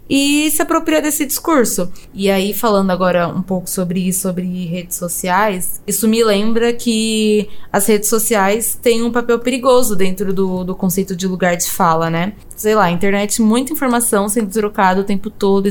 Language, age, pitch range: Portuguese, 10-29, 195-240 Hz